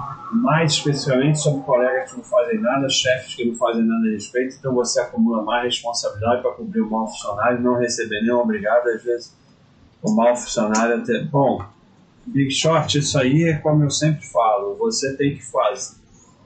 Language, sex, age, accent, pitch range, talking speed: Portuguese, male, 30-49, Brazilian, 110-145 Hz, 180 wpm